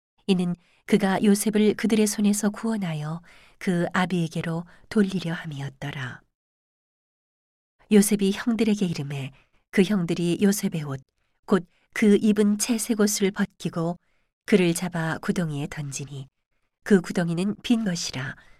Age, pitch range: 40-59, 160-210 Hz